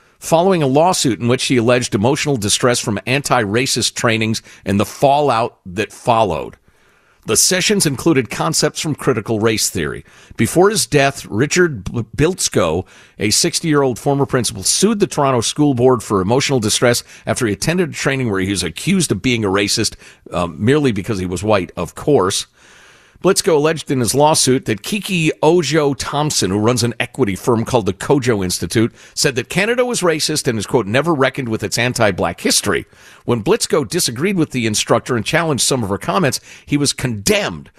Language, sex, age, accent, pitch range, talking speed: English, male, 50-69, American, 110-180 Hz, 175 wpm